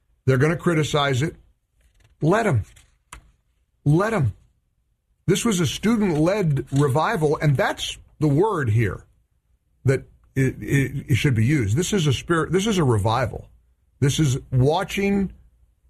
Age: 40-59